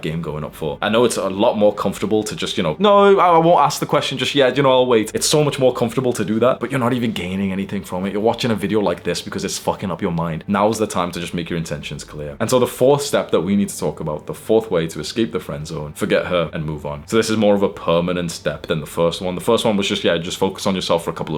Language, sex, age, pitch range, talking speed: English, male, 20-39, 85-110 Hz, 315 wpm